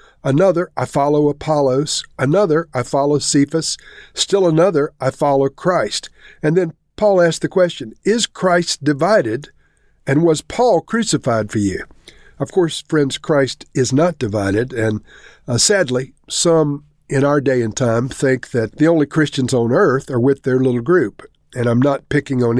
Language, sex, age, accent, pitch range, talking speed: English, male, 50-69, American, 125-160 Hz, 160 wpm